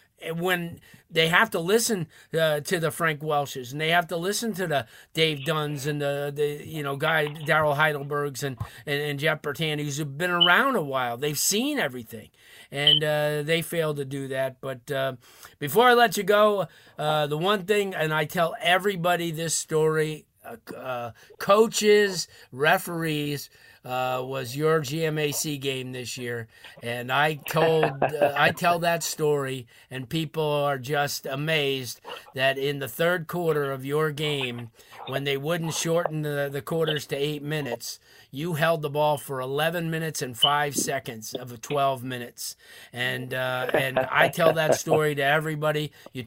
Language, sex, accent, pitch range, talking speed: English, male, American, 135-160 Hz, 165 wpm